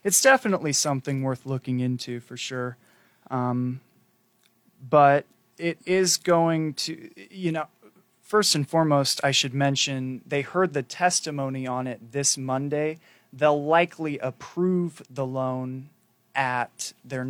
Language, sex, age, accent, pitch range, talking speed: English, male, 20-39, American, 125-145 Hz, 130 wpm